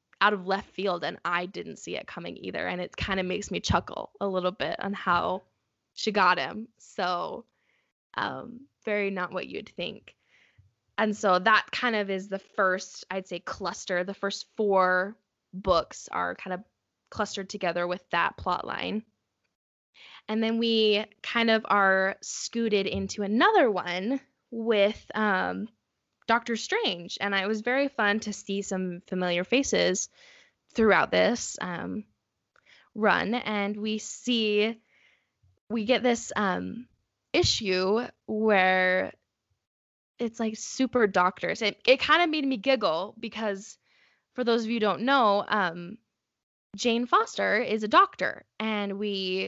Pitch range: 185-230 Hz